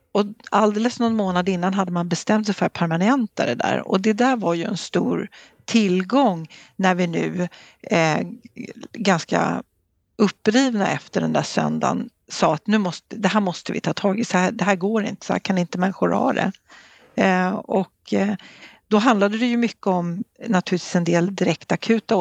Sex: female